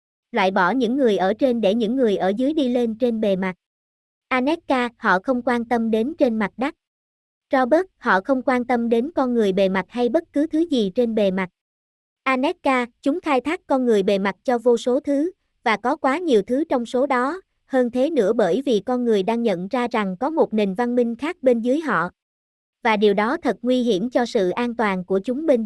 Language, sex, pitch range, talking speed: Vietnamese, male, 220-275 Hz, 225 wpm